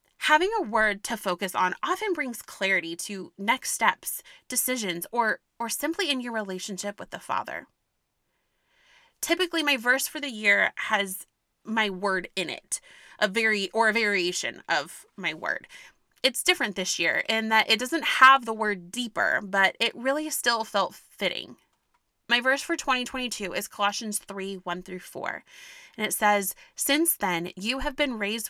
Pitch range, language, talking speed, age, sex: 195-255 Hz, English, 165 wpm, 20-39, female